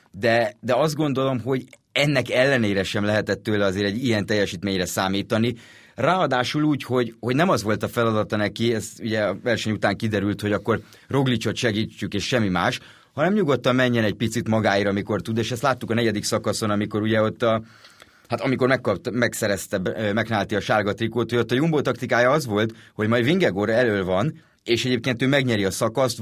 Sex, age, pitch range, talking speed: male, 30-49, 105-125 Hz, 190 wpm